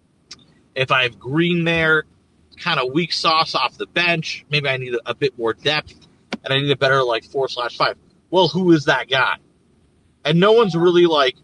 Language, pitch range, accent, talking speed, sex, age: English, 125-165 Hz, American, 205 wpm, male, 40-59